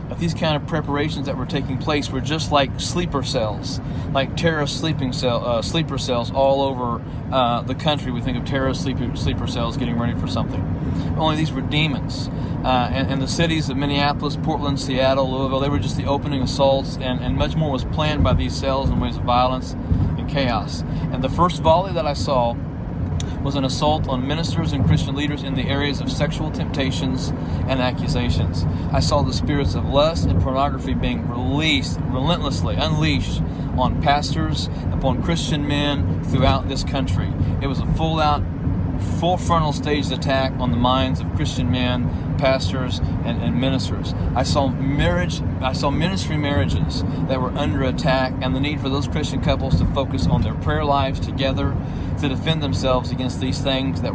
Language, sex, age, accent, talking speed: English, male, 40-59, American, 180 wpm